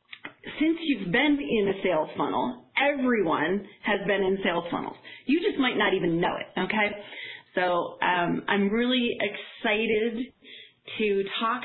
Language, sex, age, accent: English, female, 30-49, American